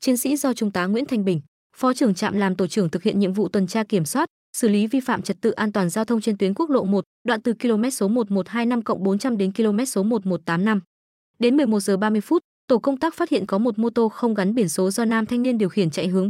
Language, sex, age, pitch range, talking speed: Vietnamese, female, 20-39, 195-245 Hz, 265 wpm